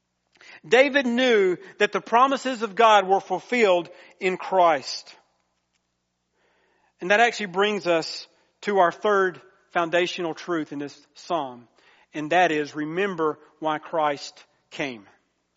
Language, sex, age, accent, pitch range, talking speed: English, male, 40-59, American, 155-215 Hz, 120 wpm